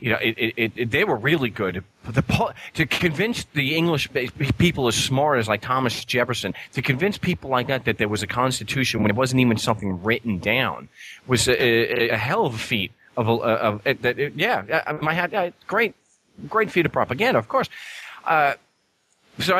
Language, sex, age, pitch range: English, male, 40-59, 115-160 Hz